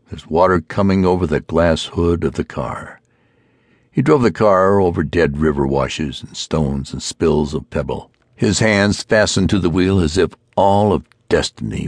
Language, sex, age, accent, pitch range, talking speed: English, male, 60-79, American, 75-105 Hz, 175 wpm